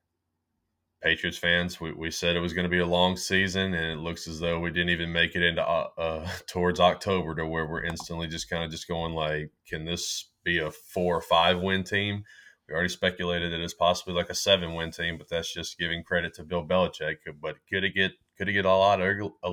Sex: male